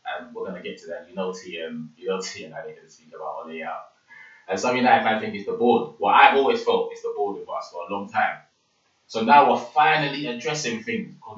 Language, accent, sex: English, British, male